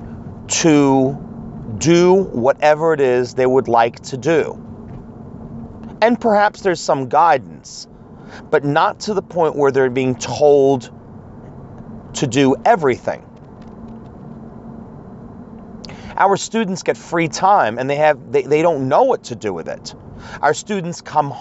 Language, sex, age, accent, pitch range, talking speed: English, male, 40-59, American, 125-175 Hz, 130 wpm